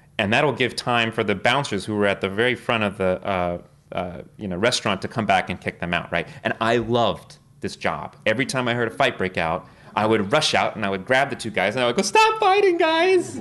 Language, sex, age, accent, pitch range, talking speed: English, male, 30-49, American, 105-145 Hz, 265 wpm